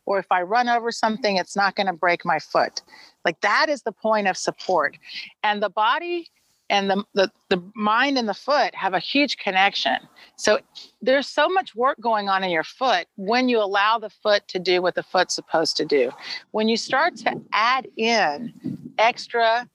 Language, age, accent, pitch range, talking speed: English, 40-59, American, 195-255 Hz, 200 wpm